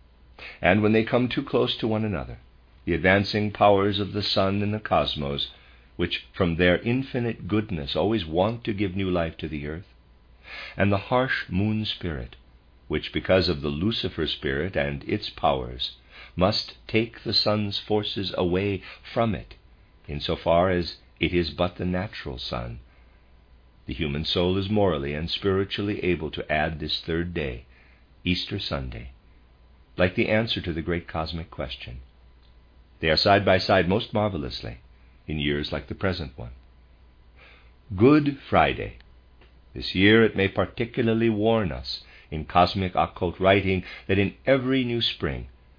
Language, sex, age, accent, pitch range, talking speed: English, male, 50-69, American, 65-100 Hz, 155 wpm